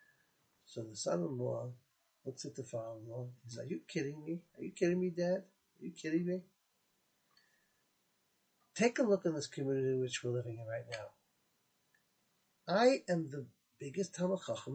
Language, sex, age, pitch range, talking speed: English, male, 50-69, 140-200 Hz, 160 wpm